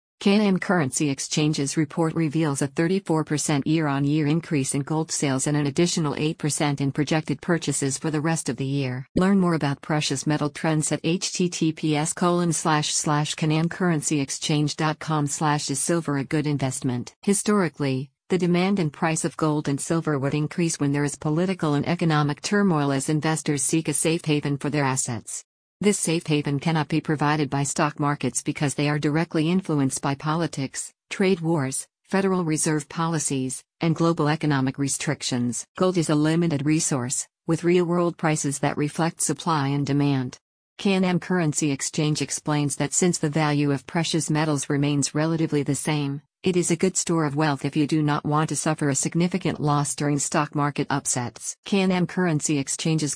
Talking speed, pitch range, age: 160 wpm, 145-165 Hz, 50-69